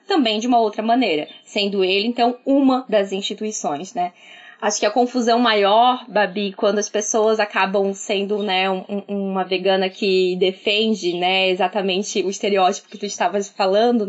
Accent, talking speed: Brazilian, 155 wpm